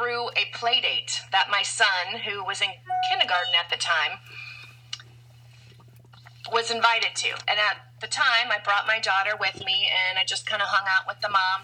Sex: female